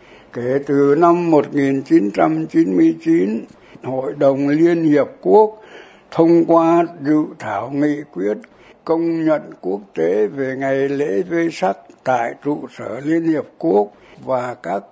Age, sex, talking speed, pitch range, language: 60-79, male, 130 wpm, 135-165 Hz, Vietnamese